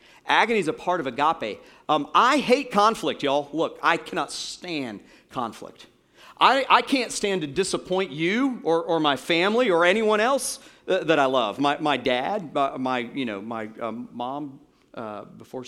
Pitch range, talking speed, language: 120-180 Hz, 170 wpm, English